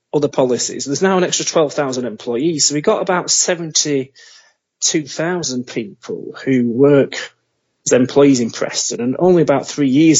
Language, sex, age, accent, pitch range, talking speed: English, male, 30-49, British, 135-185 Hz, 145 wpm